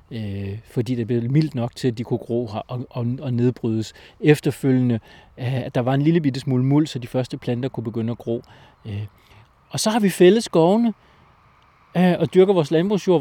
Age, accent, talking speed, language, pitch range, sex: 40-59, native, 175 wpm, Danish, 115-150 Hz, male